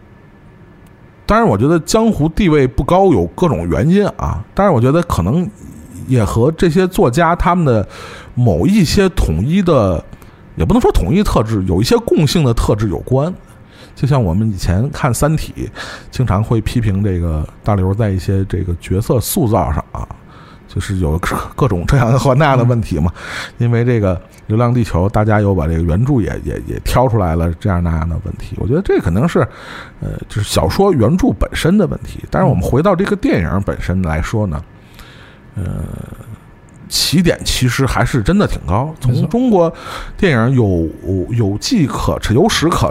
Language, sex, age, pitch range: Chinese, male, 50-69, 95-145 Hz